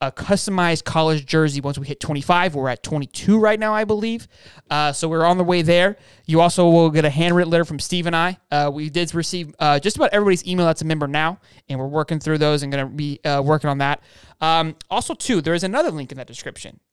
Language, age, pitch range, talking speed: English, 20-39, 150-195 Hz, 240 wpm